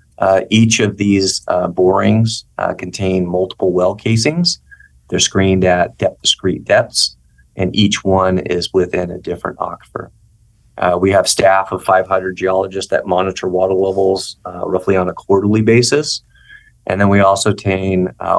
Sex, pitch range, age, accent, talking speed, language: male, 95-105 Hz, 30-49, American, 155 wpm, English